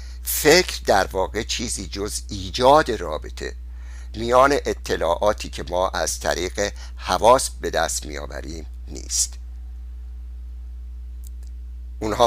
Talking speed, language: 95 wpm, Persian